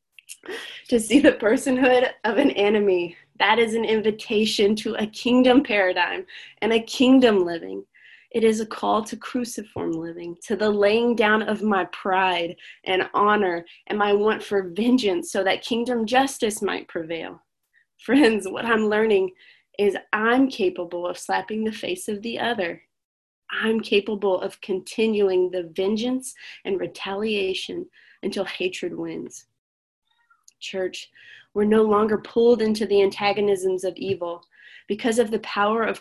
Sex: female